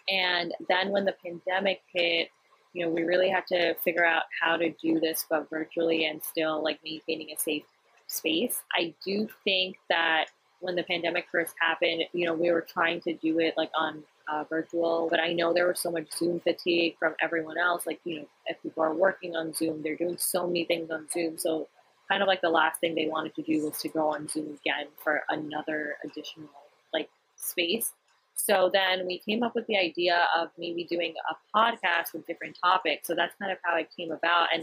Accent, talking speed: American, 215 wpm